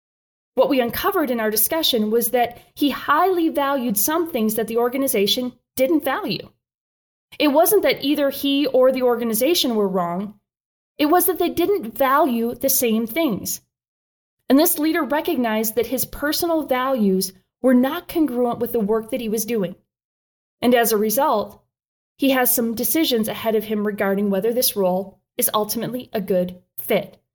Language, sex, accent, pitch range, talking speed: English, female, American, 220-285 Hz, 165 wpm